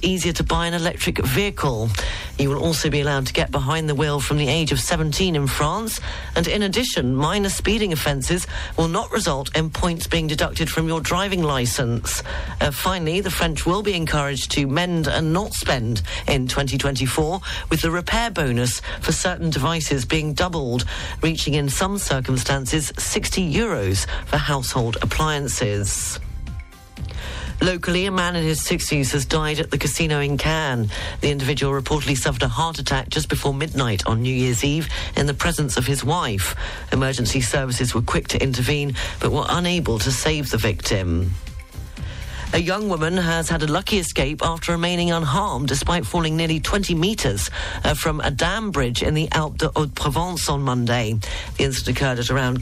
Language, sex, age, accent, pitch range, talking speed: English, female, 40-59, British, 125-165 Hz, 170 wpm